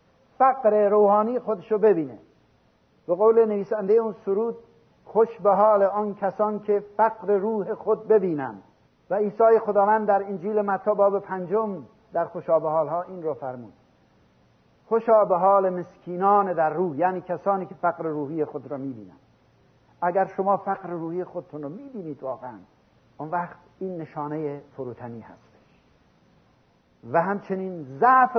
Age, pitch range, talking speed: 50-69, 160-215 Hz, 130 wpm